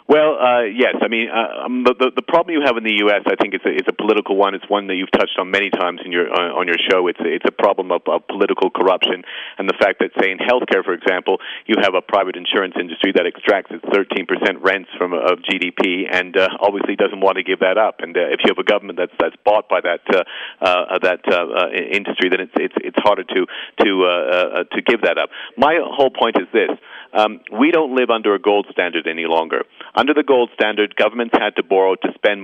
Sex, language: male, English